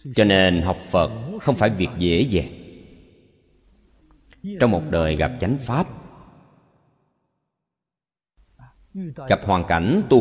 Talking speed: 110 wpm